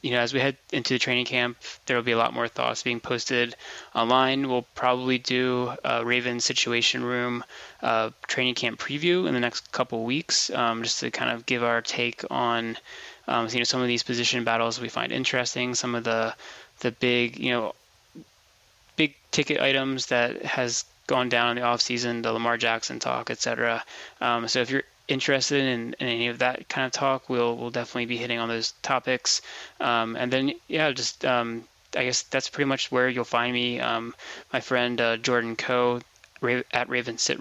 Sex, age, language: male, 20-39, English